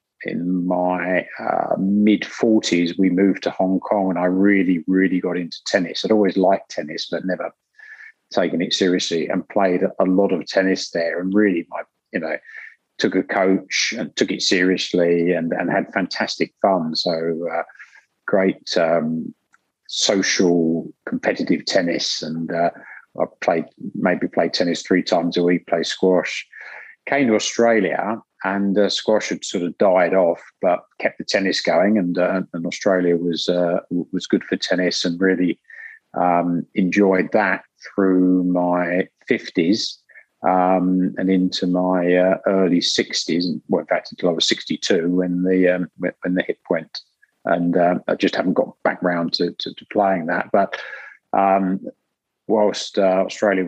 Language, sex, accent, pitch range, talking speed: English, male, British, 90-95 Hz, 160 wpm